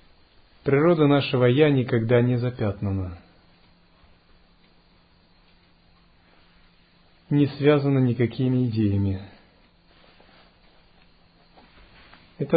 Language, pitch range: Russian, 95-140 Hz